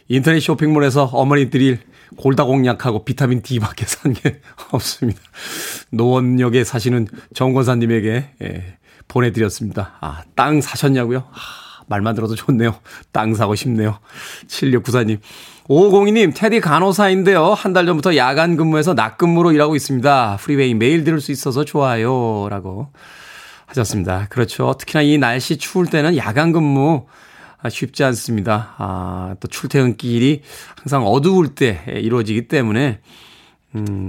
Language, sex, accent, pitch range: Korean, male, native, 115-150 Hz